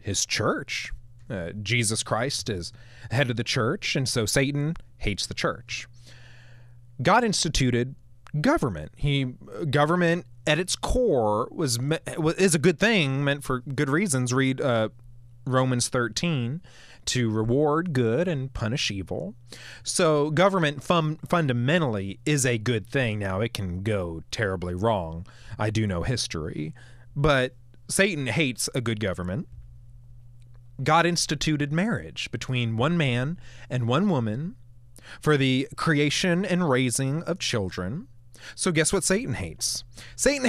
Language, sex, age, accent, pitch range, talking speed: English, male, 30-49, American, 115-155 Hz, 130 wpm